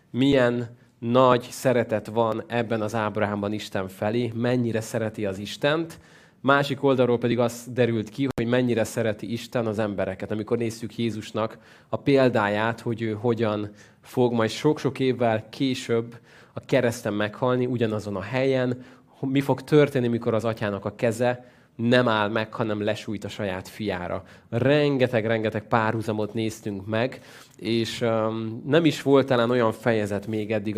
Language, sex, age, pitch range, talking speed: Hungarian, male, 20-39, 105-125 Hz, 145 wpm